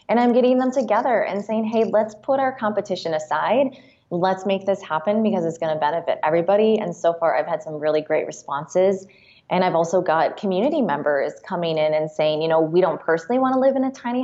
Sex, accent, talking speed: female, American, 225 wpm